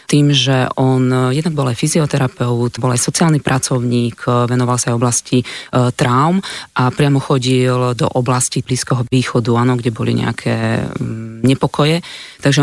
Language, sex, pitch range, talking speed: Slovak, female, 125-140 Hz, 145 wpm